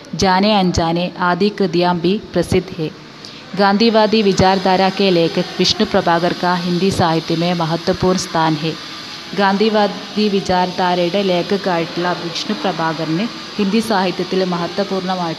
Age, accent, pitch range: 20-39, native, 175-200 Hz